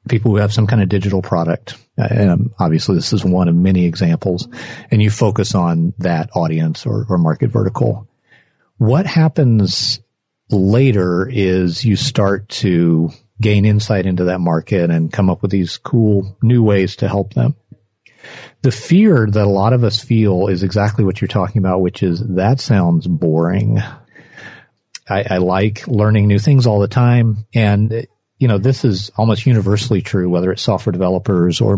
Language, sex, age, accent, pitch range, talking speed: English, male, 40-59, American, 95-120 Hz, 170 wpm